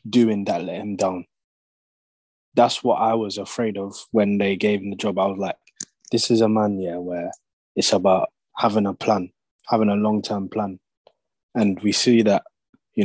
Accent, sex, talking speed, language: British, male, 190 wpm, English